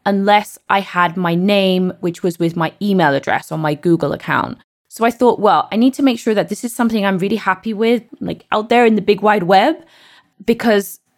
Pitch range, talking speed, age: 175-215 Hz, 220 wpm, 20-39